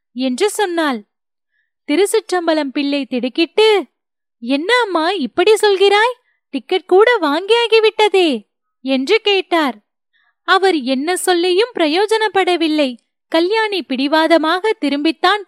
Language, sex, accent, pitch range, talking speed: Tamil, female, native, 270-370 Hz, 80 wpm